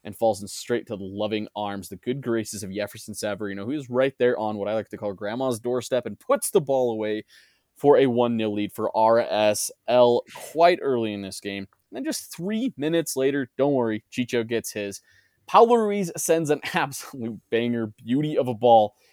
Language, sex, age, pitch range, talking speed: English, male, 20-39, 105-135 Hz, 195 wpm